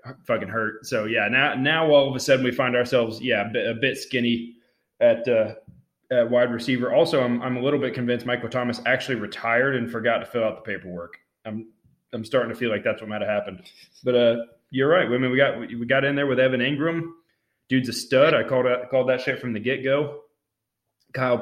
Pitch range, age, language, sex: 110-130 Hz, 20-39, English, male